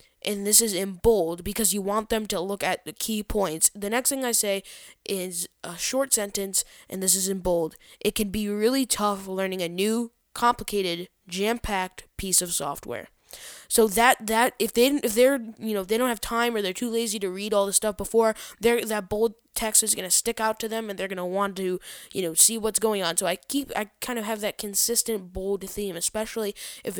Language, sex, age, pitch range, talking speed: English, female, 10-29, 185-225 Hz, 225 wpm